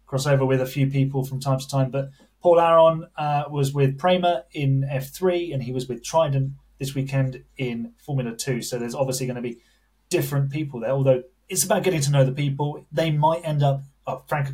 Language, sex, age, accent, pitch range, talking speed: English, male, 30-49, British, 130-155 Hz, 215 wpm